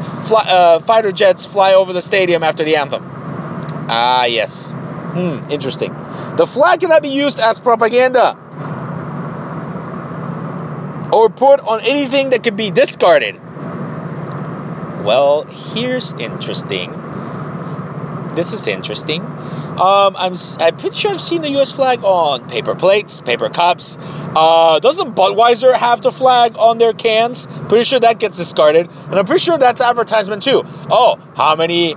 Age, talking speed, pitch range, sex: 30-49, 140 wpm, 160-235 Hz, male